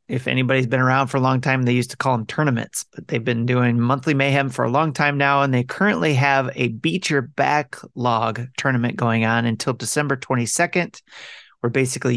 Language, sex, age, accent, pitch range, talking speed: English, male, 30-49, American, 115-135 Hz, 200 wpm